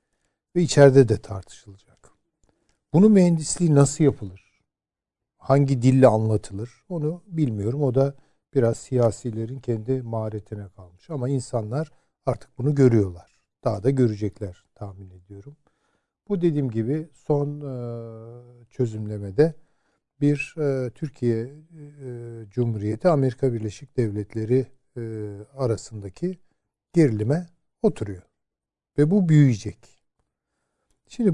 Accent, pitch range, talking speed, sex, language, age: native, 110-145 Hz, 90 wpm, male, Turkish, 50-69